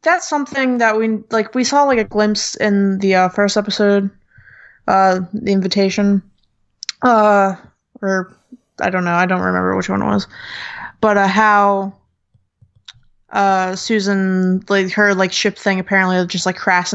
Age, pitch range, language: 20-39, 180-215 Hz, English